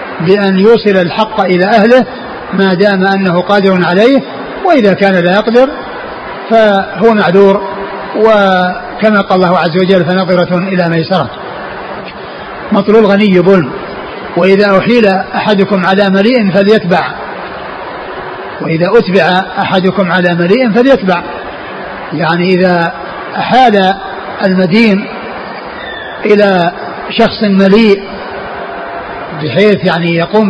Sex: male